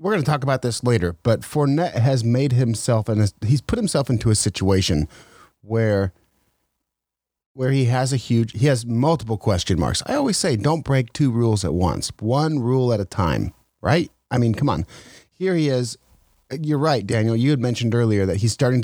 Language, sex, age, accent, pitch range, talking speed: English, male, 40-59, American, 100-140 Hz, 205 wpm